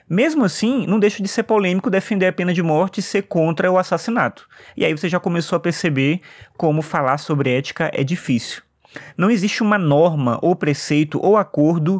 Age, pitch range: 20-39, 150-190 Hz